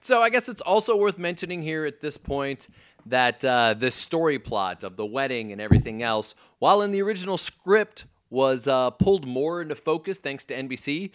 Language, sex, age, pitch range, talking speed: English, male, 30-49, 105-150 Hz, 195 wpm